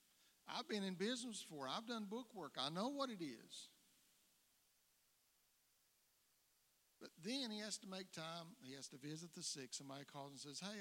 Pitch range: 140-205 Hz